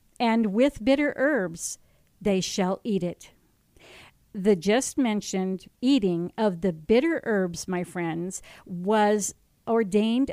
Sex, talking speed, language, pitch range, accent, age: female, 115 wpm, English, 190-240 Hz, American, 50-69